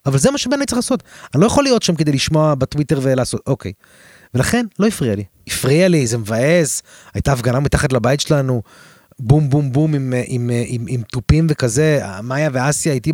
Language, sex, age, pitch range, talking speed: Hebrew, male, 30-49, 115-155 Hz, 185 wpm